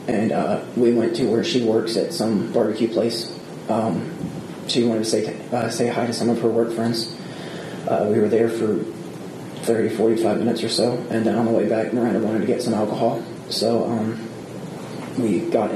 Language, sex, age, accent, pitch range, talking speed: English, male, 20-39, American, 115-120 Hz, 200 wpm